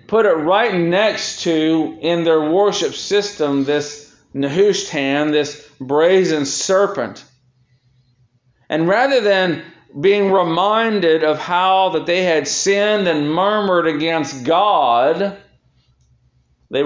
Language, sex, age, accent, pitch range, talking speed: English, male, 40-59, American, 120-170 Hz, 105 wpm